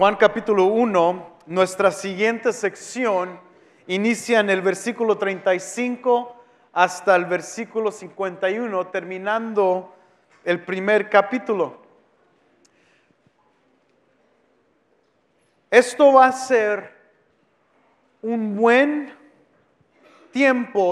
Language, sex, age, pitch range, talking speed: English, male, 40-59, 200-255 Hz, 75 wpm